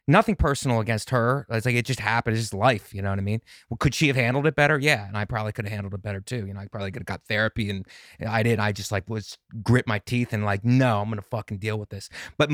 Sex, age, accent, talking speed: male, 30-49, American, 305 wpm